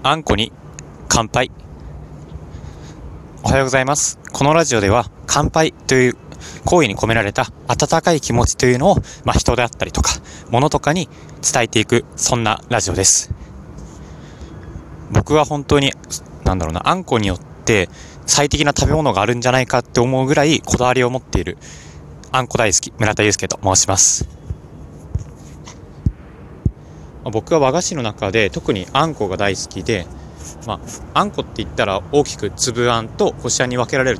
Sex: male